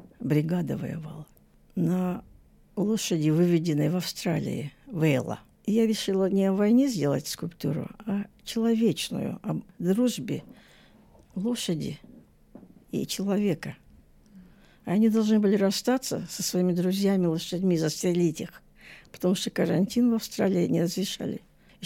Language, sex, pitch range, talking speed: Russian, female, 175-215 Hz, 110 wpm